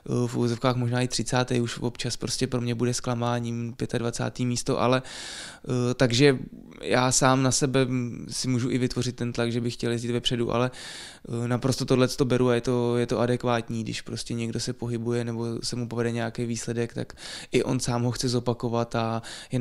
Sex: male